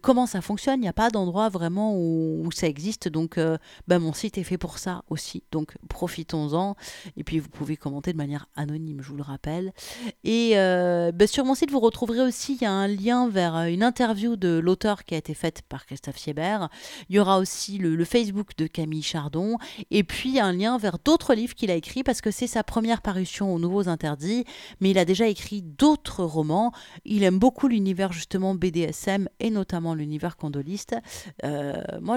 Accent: French